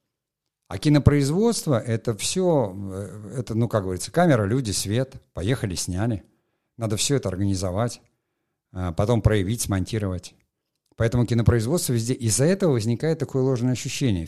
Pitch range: 105-130 Hz